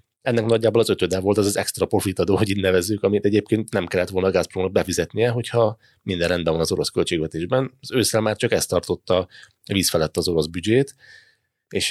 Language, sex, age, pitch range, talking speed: Hungarian, male, 30-49, 85-105 Hz, 185 wpm